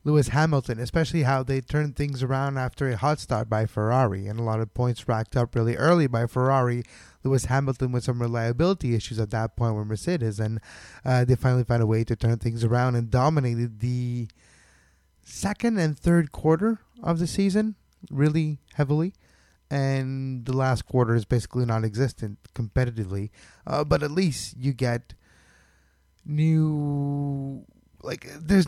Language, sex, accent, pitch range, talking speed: English, male, American, 115-155 Hz, 160 wpm